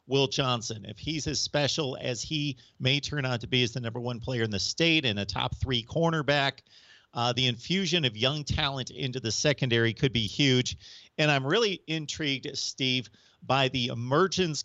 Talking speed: 190 wpm